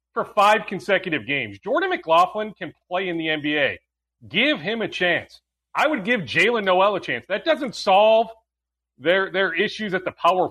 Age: 40-59